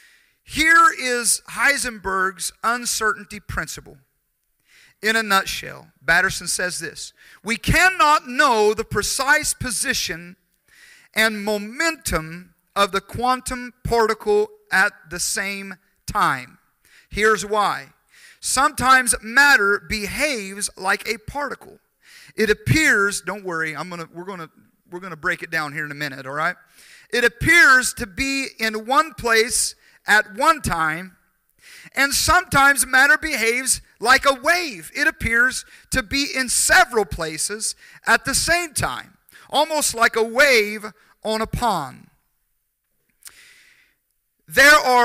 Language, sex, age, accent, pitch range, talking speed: English, male, 40-59, American, 185-270 Hz, 125 wpm